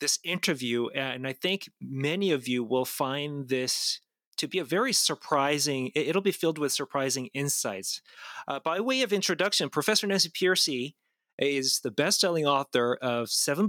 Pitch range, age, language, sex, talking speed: 125-155 Hz, 30-49, English, male, 160 wpm